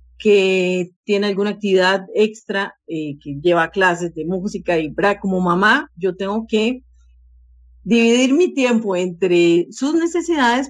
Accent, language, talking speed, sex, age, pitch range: Colombian, English, 135 wpm, female, 40-59, 175-235 Hz